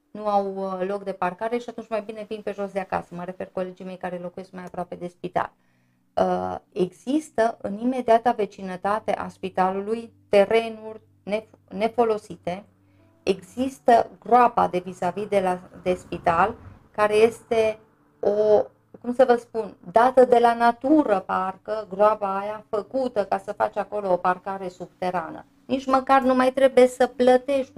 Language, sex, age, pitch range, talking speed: Romanian, female, 30-49, 185-235 Hz, 150 wpm